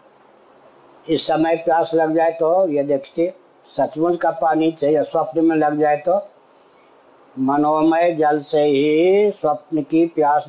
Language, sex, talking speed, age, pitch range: Hindi, female, 135 wpm, 60-79, 145-165 Hz